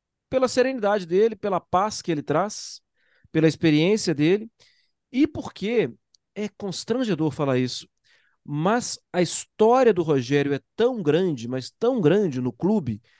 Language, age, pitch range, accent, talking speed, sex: Portuguese, 40-59, 140-205 Hz, Brazilian, 135 wpm, male